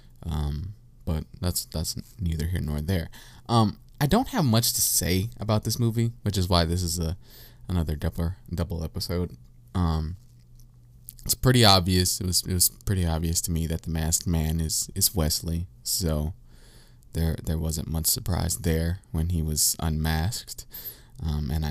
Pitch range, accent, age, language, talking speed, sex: 85-115 Hz, American, 20-39, English, 165 wpm, male